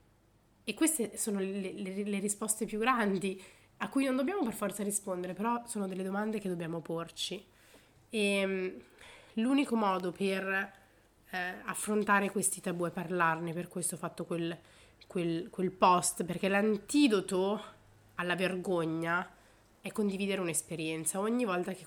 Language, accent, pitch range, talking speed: Italian, native, 165-205 Hz, 135 wpm